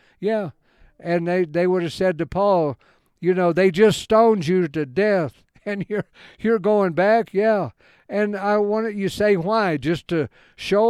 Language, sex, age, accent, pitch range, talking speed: English, male, 60-79, American, 145-190 Hz, 175 wpm